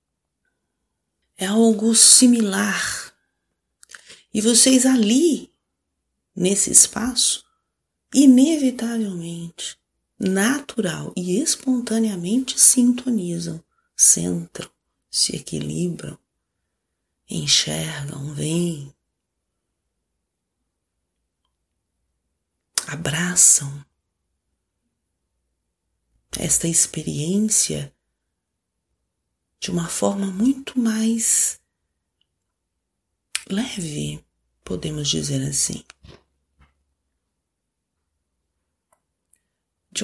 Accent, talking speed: Brazilian, 45 wpm